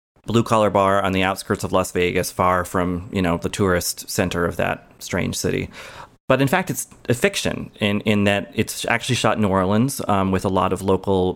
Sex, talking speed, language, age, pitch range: male, 215 wpm, English, 30-49, 95-110 Hz